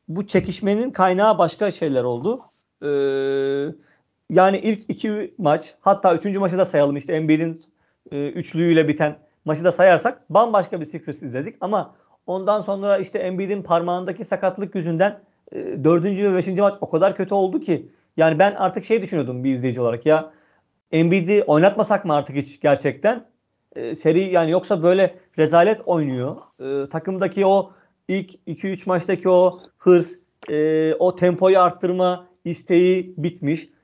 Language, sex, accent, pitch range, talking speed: Turkish, male, native, 155-195 Hz, 145 wpm